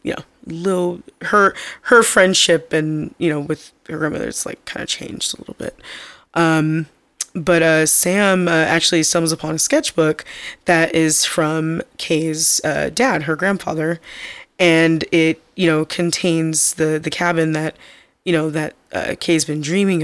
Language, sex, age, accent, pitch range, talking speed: English, female, 20-39, American, 155-175 Hz, 160 wpm